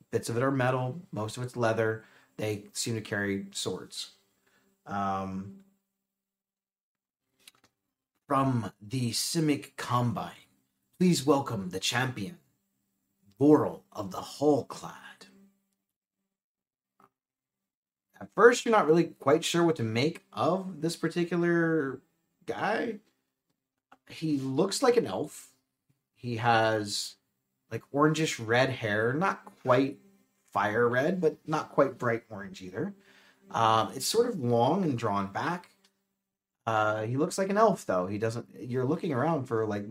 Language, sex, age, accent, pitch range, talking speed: English, male, 30-49, American, 105-155 Hz, 125 wpm